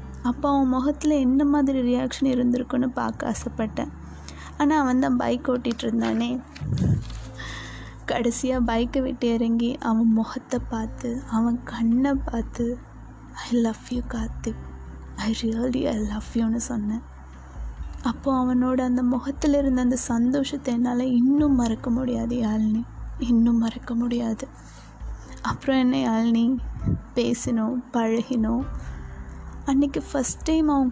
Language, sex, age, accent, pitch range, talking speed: Tamil, female, 20-39, native, 230-255 Hz, 115 wpm